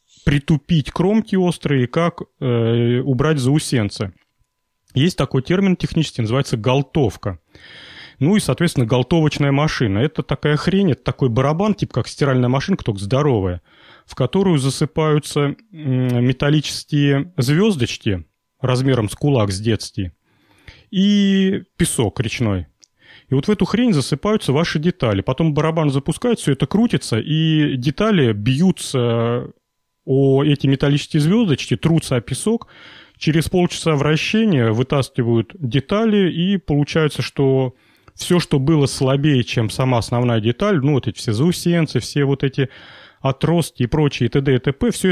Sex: male